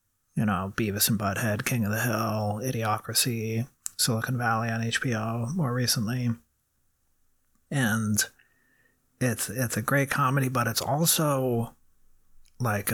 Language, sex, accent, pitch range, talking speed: English, male, American, 105-125 Hz, 120 wpm